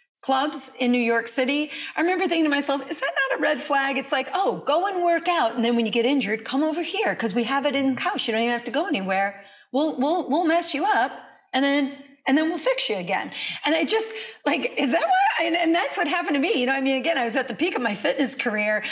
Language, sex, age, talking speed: English, female, 30-49, 275 wpm